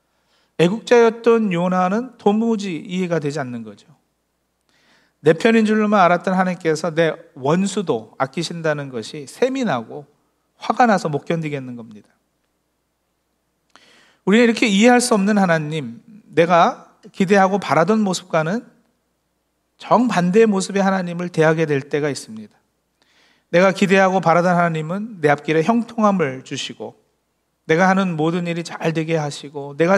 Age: 40-59